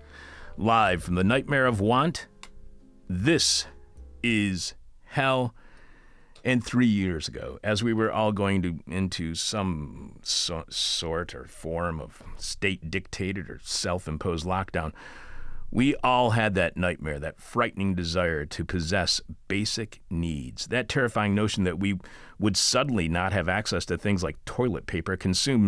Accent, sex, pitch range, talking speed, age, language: American, male, 90-115 Hz, 130 wpm, 40-59, English